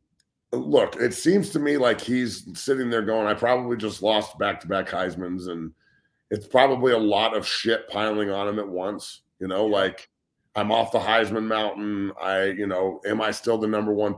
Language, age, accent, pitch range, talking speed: English, 40-59, American, 105-120 Hz, 190 wpm